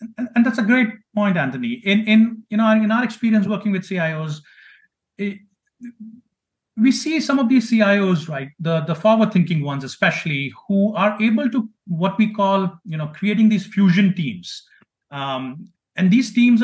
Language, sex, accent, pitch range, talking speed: English, male, Indian, 165-210 Hz, 170 wpm